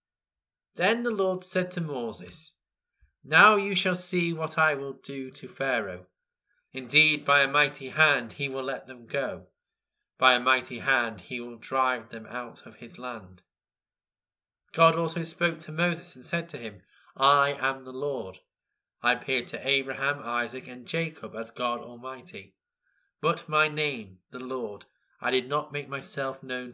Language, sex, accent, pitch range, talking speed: English, male, British, 125-165 Hz, 160 wpm